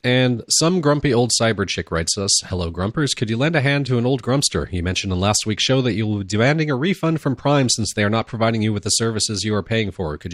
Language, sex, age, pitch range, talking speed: English, male, 40-59, 95-120 Hz, 280 wpm